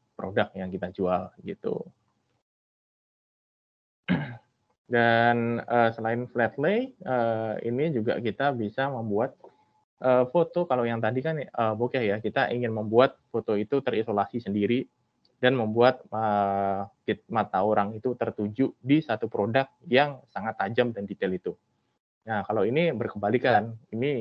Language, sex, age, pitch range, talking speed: Indonesian, male, 20-39, 100-125 Hz, 130 wpm